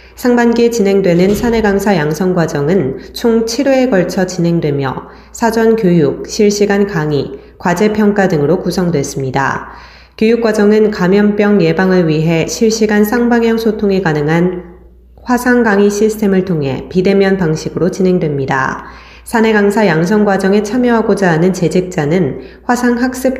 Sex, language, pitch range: female, Korean, 170-210 Hz